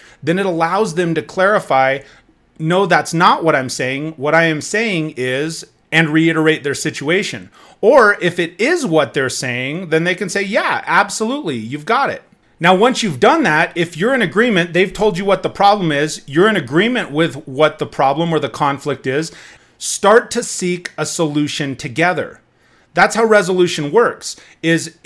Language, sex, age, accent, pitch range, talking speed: English, male, 30-49, American, 155-200 Hz, 180 wpm